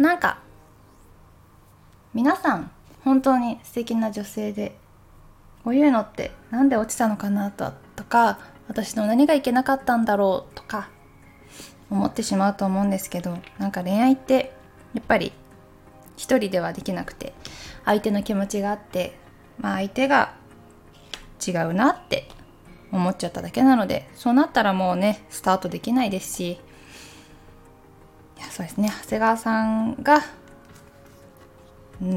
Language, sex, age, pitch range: Japanese, female, 20-39, 185-240 Hz